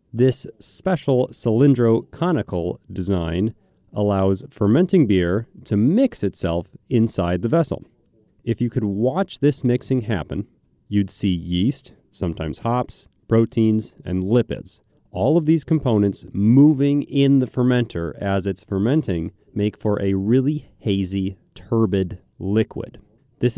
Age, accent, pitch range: 30-49, American, 95-125 Hz